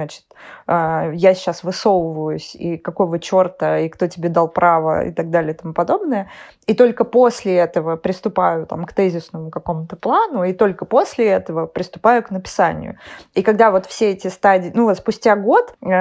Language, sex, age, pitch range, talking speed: Russian, female, 20-39, 175-210 Hz, 165 wpm